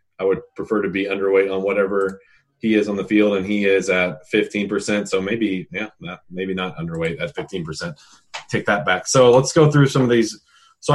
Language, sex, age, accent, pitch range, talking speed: English, male, 30-49, American, 95-115 Hz, 210 wpm